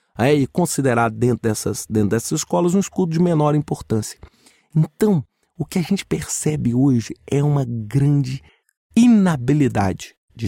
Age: 40-59